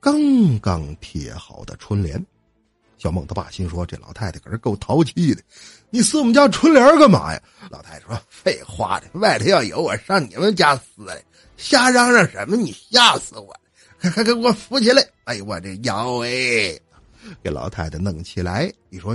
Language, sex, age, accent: Chinese, male, 50-69, native